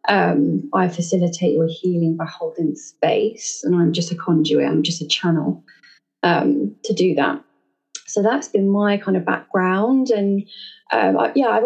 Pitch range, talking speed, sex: 190-235 Hz, 165 wpm, female